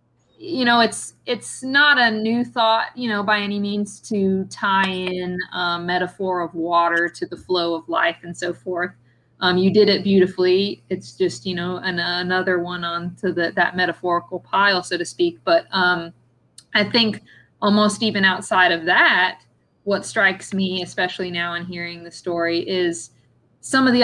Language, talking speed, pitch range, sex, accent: English, 175 wpm, 175-210 Hz, female, American